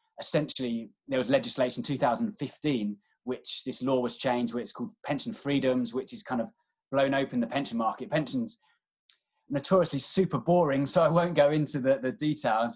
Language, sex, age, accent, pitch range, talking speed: English, male, 20-39, British, 125-165 Hz, 200 wpm